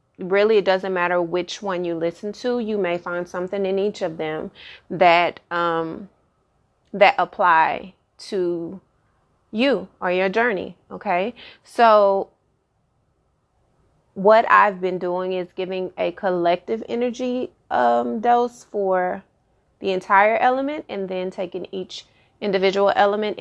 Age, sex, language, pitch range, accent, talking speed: 30-49, female, English, 180-210 Hz, American, 125 wpm